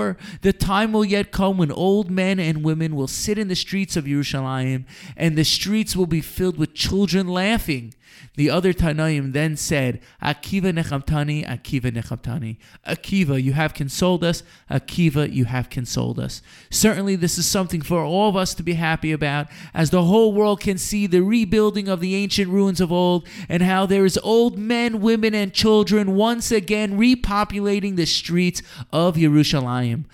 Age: 30-49